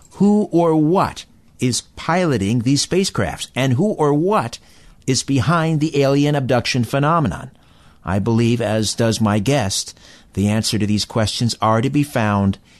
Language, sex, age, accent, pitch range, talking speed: English, male, 60-79, American, 105-140 Hz, 150 wpm